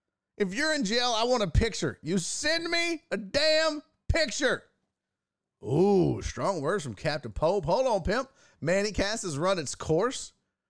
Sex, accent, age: male, American, 30-49